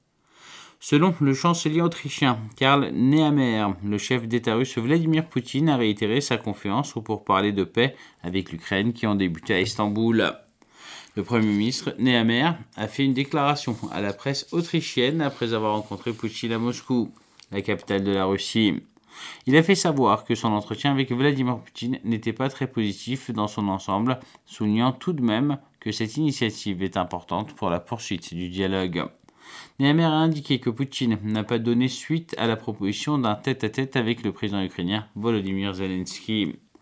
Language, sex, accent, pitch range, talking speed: French, male, French, 105-135 Hz, 165 wpm